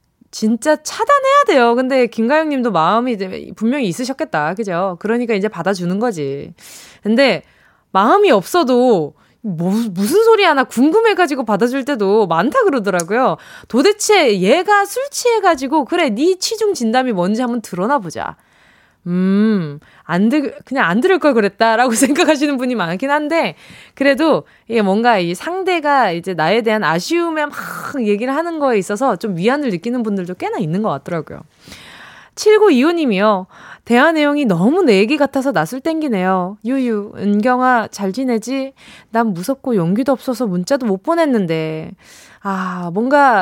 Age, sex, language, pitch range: 20-39, female, Korean, 205-300 Hz